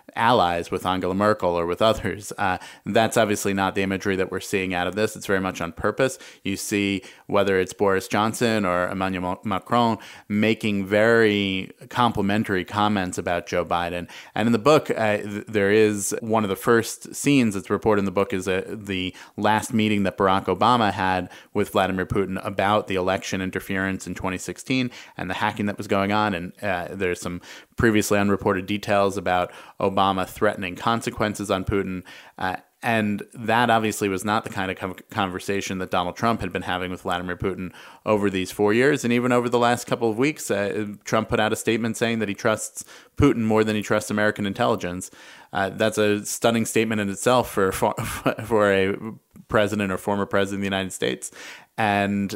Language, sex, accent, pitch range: English, male, American, 95-110 Hz